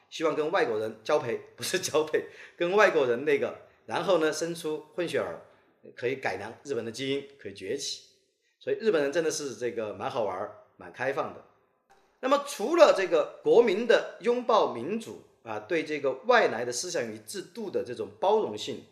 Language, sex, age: Chinese, male, 40-59